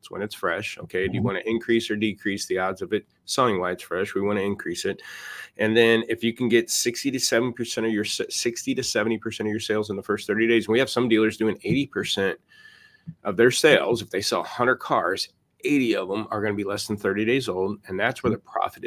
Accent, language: American, English